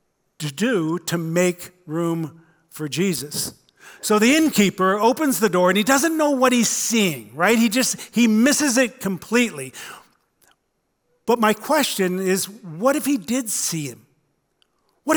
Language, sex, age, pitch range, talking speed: English, male, 50-69, 180-235 Hz, 150 wpm